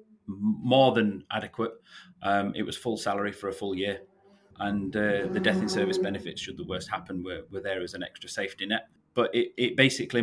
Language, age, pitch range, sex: English, 30-49, 105-120 Hz, male